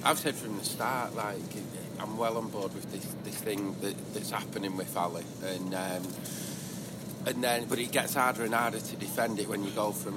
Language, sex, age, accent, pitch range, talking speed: English, male, 40-59, British, 105-130 Hz, 210 wpm